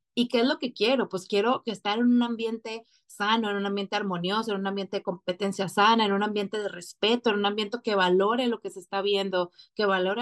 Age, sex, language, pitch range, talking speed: 30-49, female, Spanish, 195-230 Hz, 240 wpm